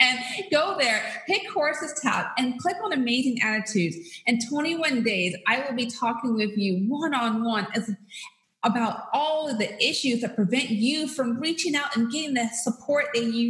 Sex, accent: female, American